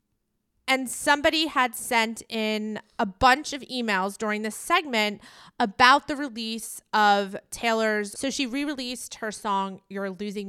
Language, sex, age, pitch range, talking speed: English, female, 20-39, 190-235 Hz, 135 wpm